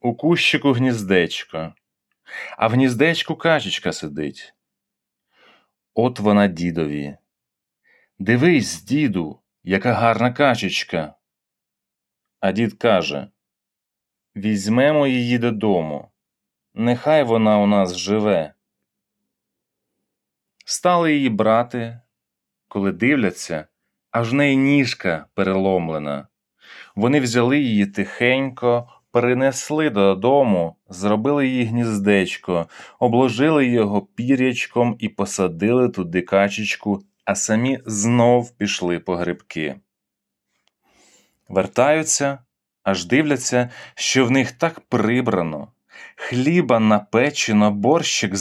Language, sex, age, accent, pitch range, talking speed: Ukrainian, male, 30-49, native, 100-130 Hz, 90 wpm